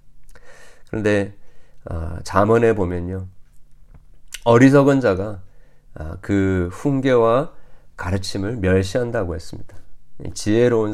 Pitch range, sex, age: 90-125 Hz, male, 40-59